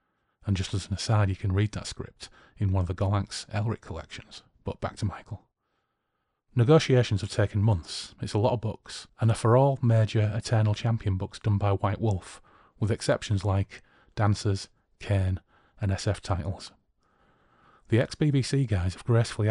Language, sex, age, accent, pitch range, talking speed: English, male, 30-49, British, 100-120 Hz, 170 wpm